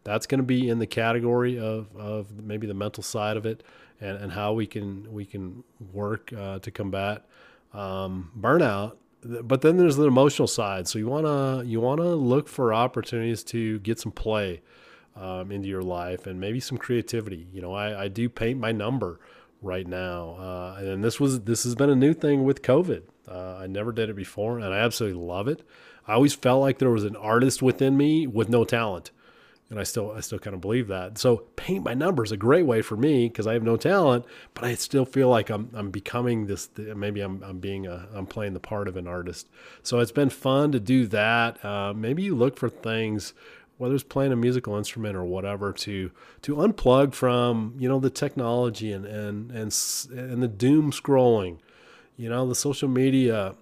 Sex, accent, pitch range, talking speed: male, American, 100-125 Hz, 210 wpm